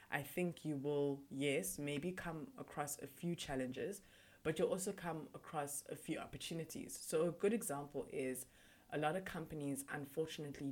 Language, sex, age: English, female, 20-39